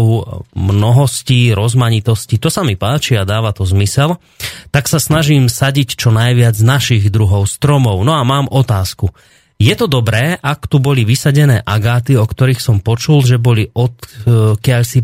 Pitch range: 110-135 Hz